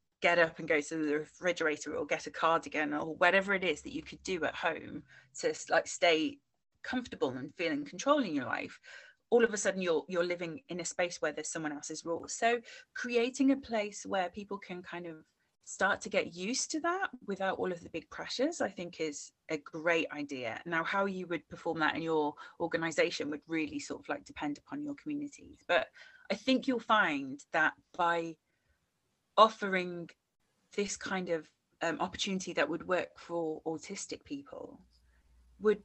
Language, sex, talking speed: English, female, 185 wpm